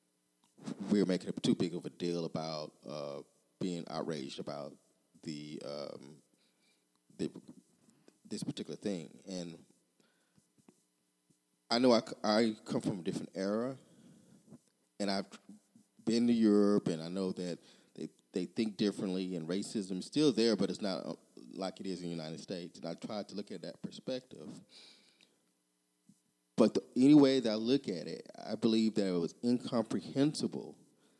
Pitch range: 75-110 Hz